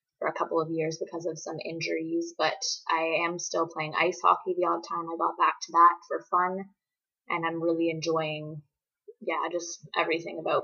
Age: 20-39